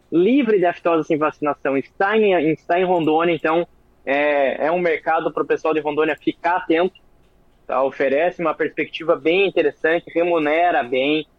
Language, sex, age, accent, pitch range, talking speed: Portuguese, male, 20-39, Brazilian, 155-205 Hz, 160 wpm